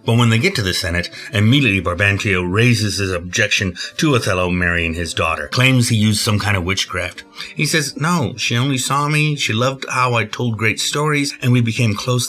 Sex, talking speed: male, 205 wpm